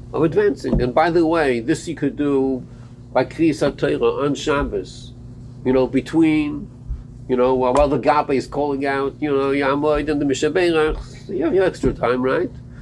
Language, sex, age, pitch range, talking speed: English, male, 50-69, 125-160 Hz, 165 wpm